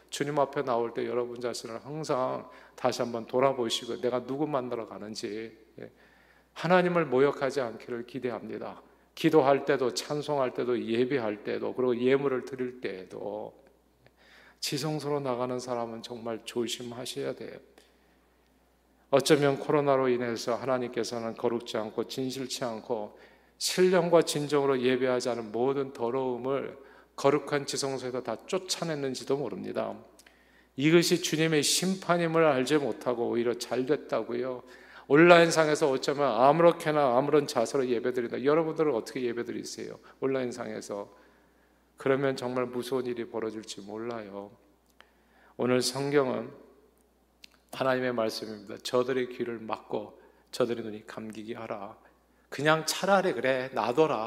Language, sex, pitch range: Korean, male, 120-145 Hz